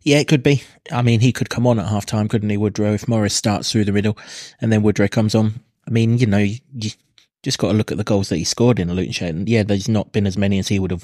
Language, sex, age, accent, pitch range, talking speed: English, male, 20-39, British, 100-115 Hz, 300 wpm